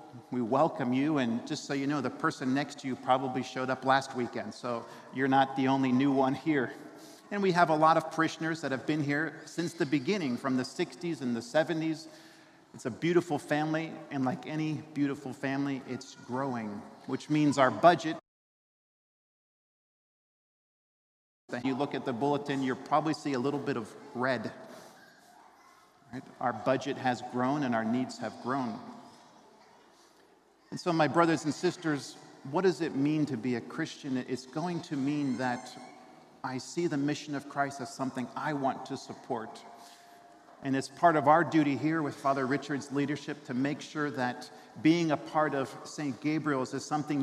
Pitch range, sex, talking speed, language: 130-155 Hz, male, 175 wpm, English